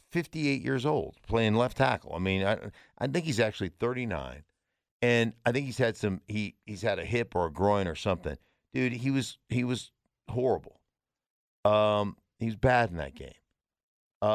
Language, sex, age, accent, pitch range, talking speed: English, male, 50-69, American, 100-145 Hz, 185 wpm